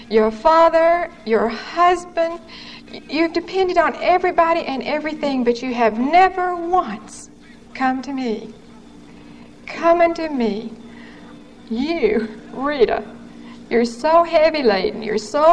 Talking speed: 110 wpm